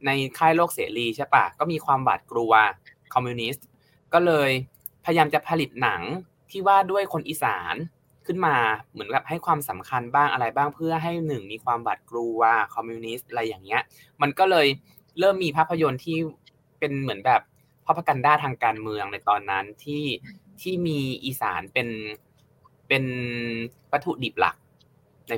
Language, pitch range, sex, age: Thai, 125-160 Hz, male, 20-39